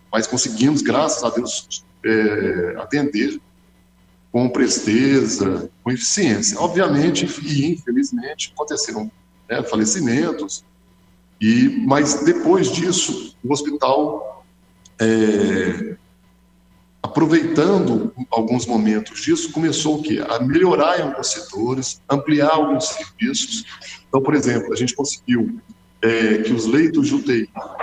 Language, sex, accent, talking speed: Portuguese, male, Brazilian, 110 wpm